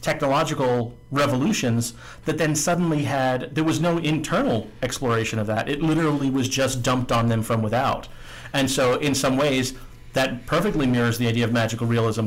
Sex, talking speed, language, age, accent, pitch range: male, 170 wpm, English, 40-59, American, 120-145 Hz